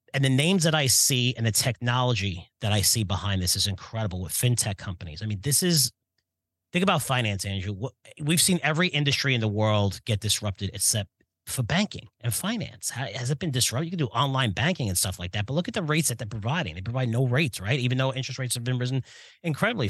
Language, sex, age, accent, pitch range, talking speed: English, male, 40-59, American, 115-150 Hz, 225 wpm